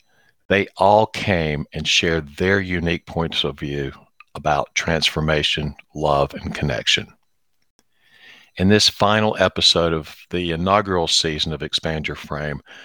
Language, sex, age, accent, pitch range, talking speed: English, male, 50-69, American, 75-100 Hz, 125 wpm